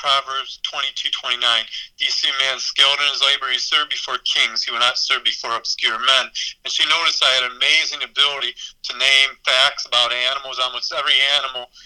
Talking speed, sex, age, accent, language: 215 wpm, male, 50-69, American, English